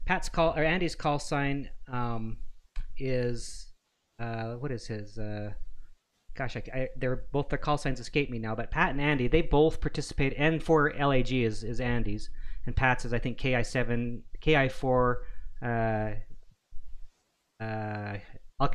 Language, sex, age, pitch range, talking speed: English, male, 30-49, 115-140 Hz, 150 wpm